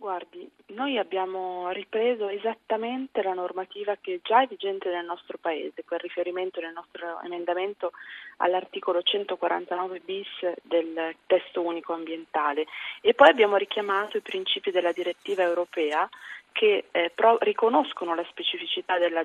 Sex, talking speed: female, 135 wpm